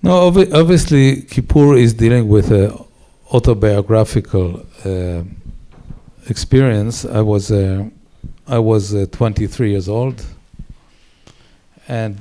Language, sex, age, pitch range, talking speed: English, male, 50-69, 100-120 Hz, 110 wpm